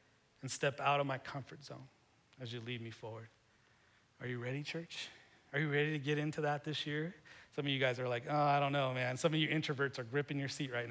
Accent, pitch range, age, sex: American, 120-145 Hz, 30-49, male